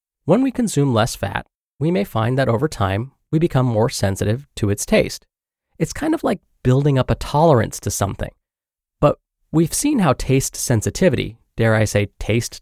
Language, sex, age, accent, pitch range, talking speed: English, male, 30-49, American, 115-145 Hz, 180 wpm